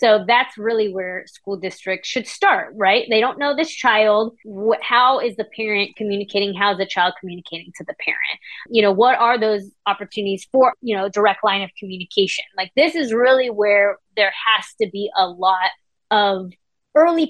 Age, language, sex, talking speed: 20-39, English, female, 185 wpm